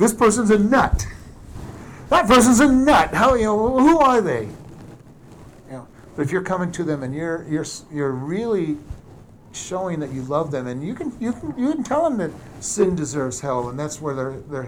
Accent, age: American, 50-69